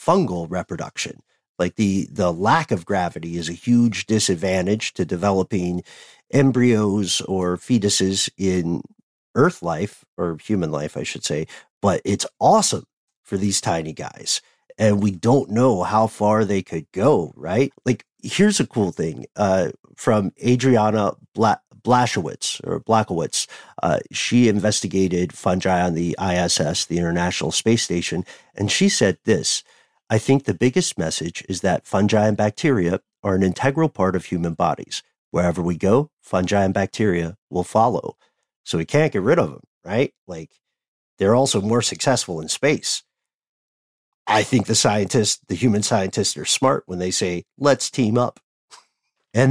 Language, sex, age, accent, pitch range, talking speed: English, male, 50-69, American, 90-120 Hz, 155 wpm